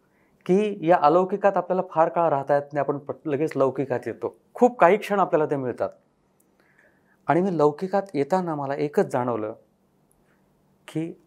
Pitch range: 125-175 Hz